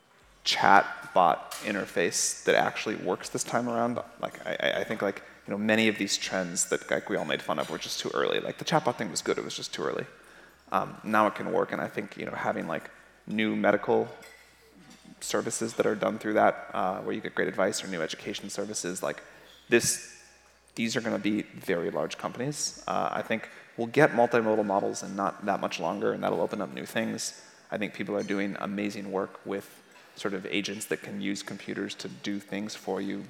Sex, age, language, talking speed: male, 30-49, English, 215 wpm